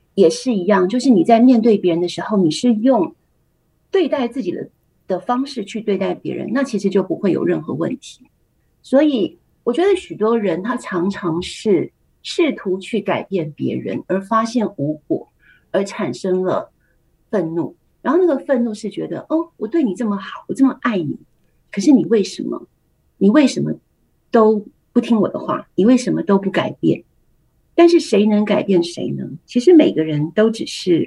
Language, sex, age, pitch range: Chinese, female, 50-69, 190-265 Hz